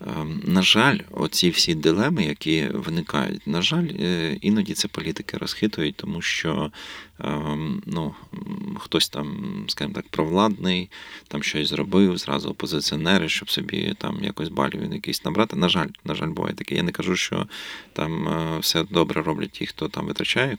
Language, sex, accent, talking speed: Ukrainian, male, native, 145 wpm